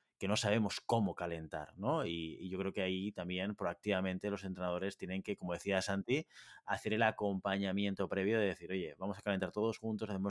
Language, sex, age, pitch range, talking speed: Spanish, male, 30-49, 100-135 Hz, 200 wpm